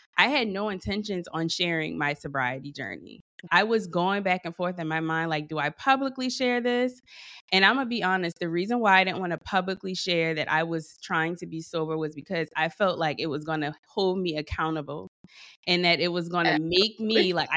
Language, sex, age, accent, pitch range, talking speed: English, female, 20-39, American, 155-190 Hz, 230 wpm